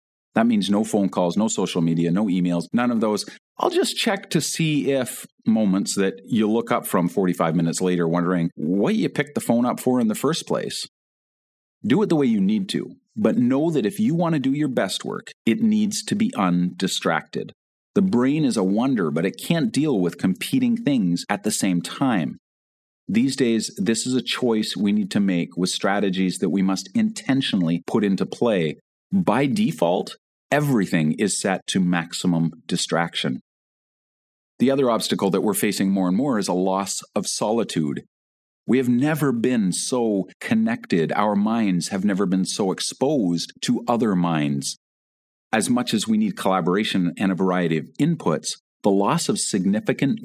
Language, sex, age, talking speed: English, male, 40-59, 180 wpm